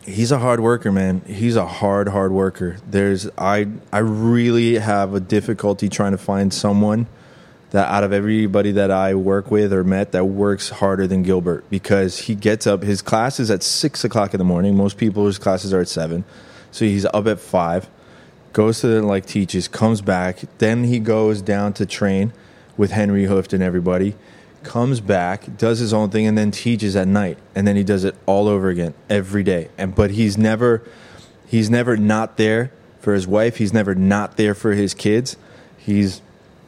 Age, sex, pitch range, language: 20-39, male, 100-110 Hz, English